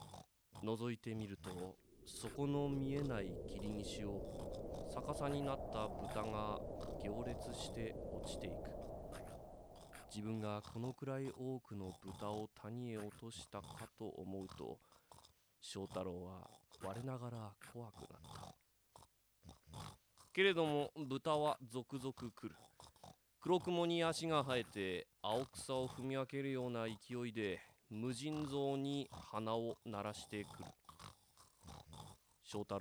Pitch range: 105-135 Hz